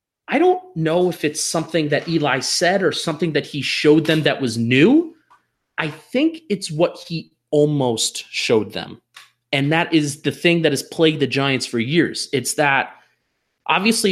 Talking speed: 175 wpm